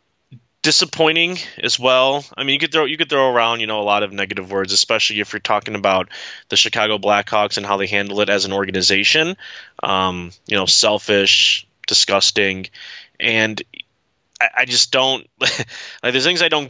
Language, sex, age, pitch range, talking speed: English, male, 20-39, 105-130 Hz, 180 wpm